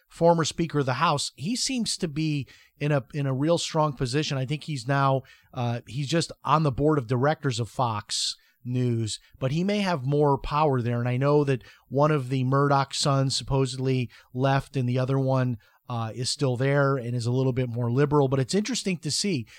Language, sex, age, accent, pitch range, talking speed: English, male, 30-49, American, 130-155 Hz, 210 wpm